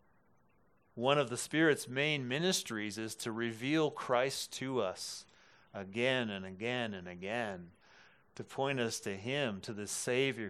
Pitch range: 110-140 Hz